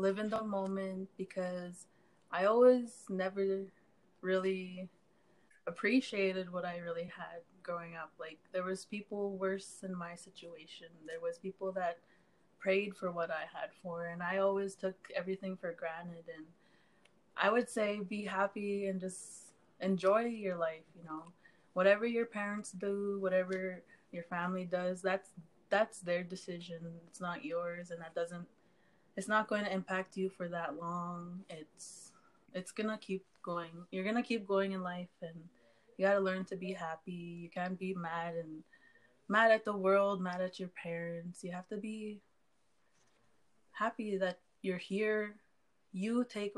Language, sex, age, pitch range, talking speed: English, female, 20-39, 175-200 Hz, 160 wpm